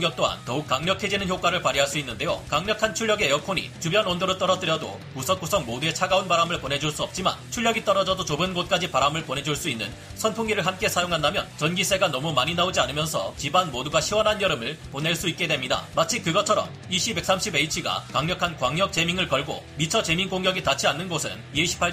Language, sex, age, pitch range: Korean, male, 40-59, 150-195 Hz